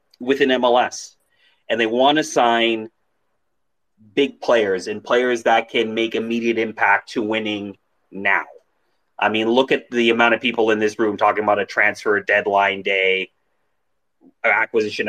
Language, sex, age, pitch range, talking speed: English, male, 30-49, 105-130 Hz, 150 wpm